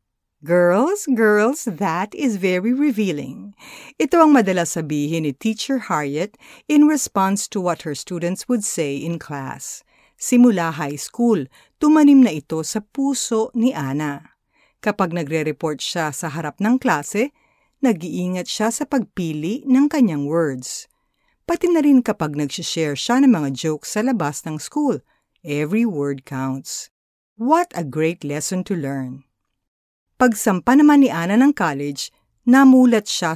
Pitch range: 160-245 Hz